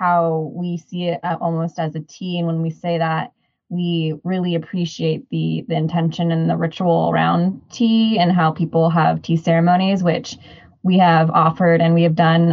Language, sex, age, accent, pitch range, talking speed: English, female, 20-39, American, 170-195 Hz, 180 wpm